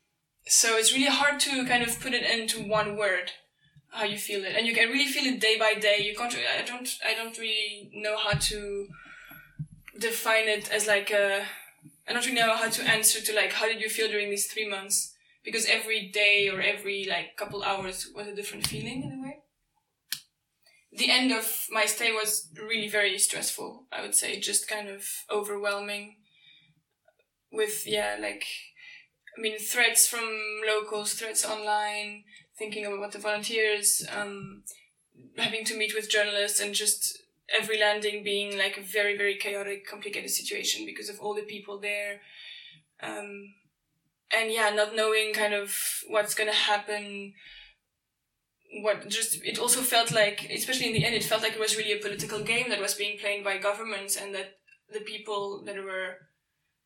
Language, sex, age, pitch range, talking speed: English, female, 20-39, 205-225 Hz, 180 wpm